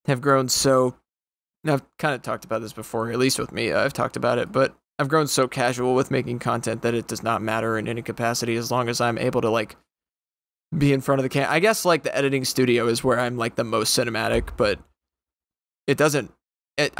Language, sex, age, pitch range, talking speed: English, male, 20-39, 115-135 Hz, 220 wpm